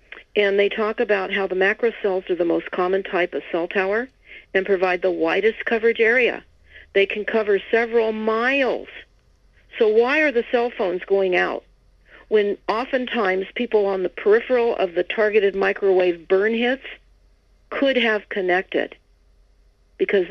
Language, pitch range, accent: English, 180-235 Hz, American